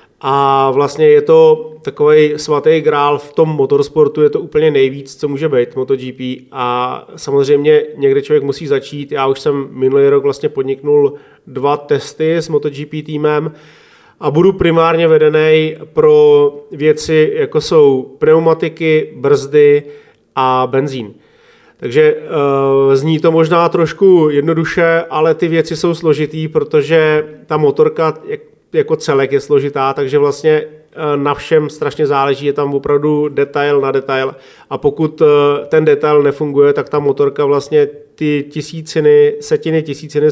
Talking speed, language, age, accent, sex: 135 wpm, Czech, 30-49, native, male